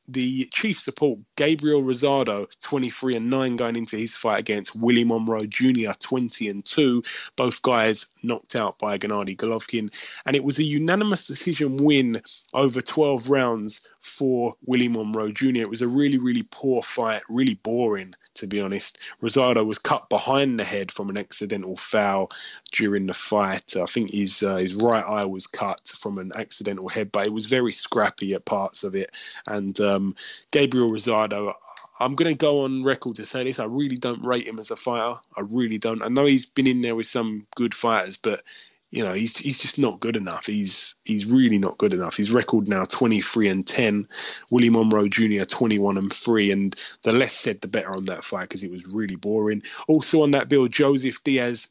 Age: 20-39